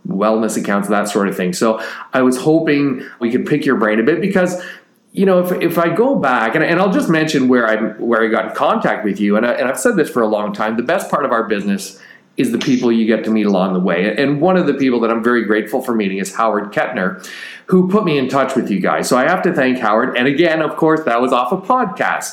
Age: 40-59